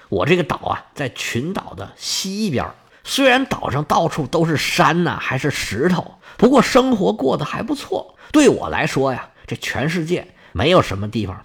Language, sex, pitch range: Chinese, male, 125-180 Hz